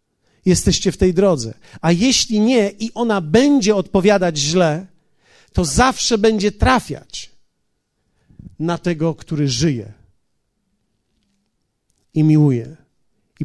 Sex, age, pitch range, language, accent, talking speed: male, 40-59, 150-215 Hz, Polish, native, 105 wpm